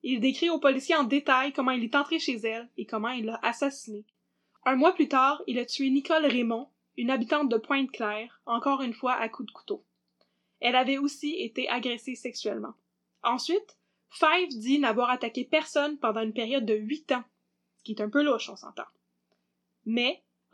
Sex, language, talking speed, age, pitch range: female, French, 190 wpm, 10-29, 230-285 Hz